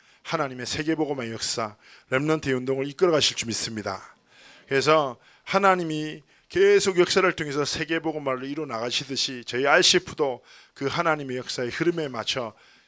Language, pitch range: Korean, 125-165 Hz